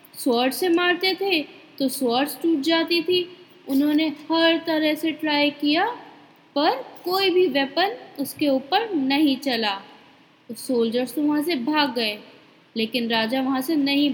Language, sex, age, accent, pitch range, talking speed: Hindi, female, 20-39, native, 265-345 Hz, 145 wpm